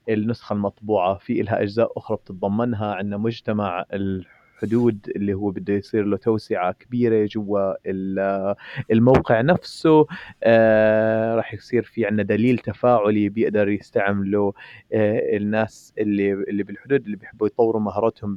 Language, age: Arabic, 30-49